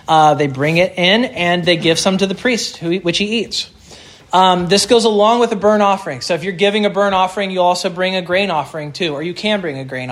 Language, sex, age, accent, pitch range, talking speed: English, male, 30-49, American, 150-190 Hz, 255 wpm